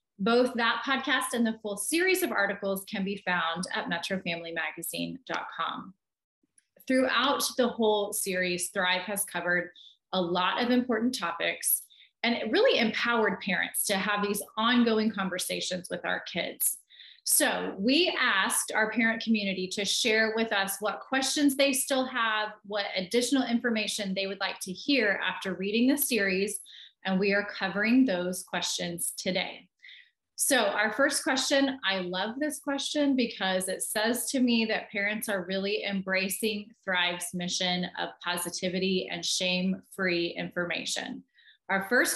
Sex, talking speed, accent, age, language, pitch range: female, 145 wpm, American, 30-49, English, 185-250 Hz